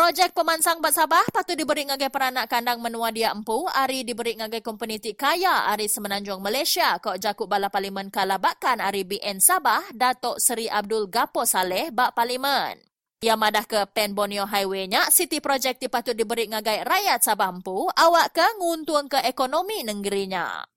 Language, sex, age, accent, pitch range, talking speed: English, female, 20-39, Indonesian, 210-310 Hz, 155 wpm